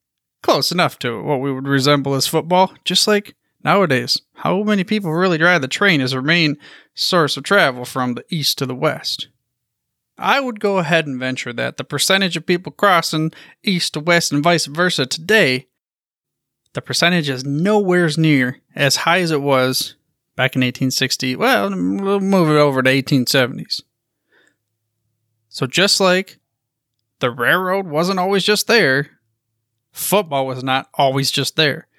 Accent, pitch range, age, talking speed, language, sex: American, 135-185 Hz, 20-39, 160 wpm, English, male